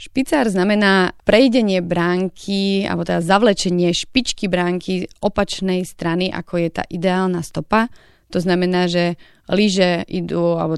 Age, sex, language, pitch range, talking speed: 30-49, female, Slovak, 175-195 Hz, 130 wpm